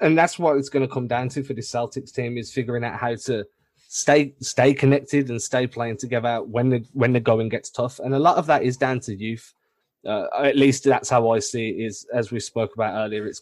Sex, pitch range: male, 115-135 Hz